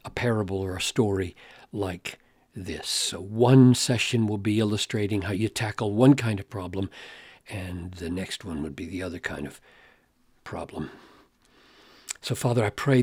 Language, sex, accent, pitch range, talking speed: English, male, American, 100-125 Hz, 160 wpm